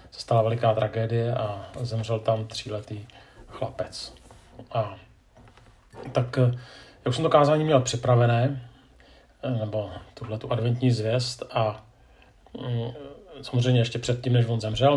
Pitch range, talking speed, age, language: 110-125 Hz, 110 wpm, 40-59, Czech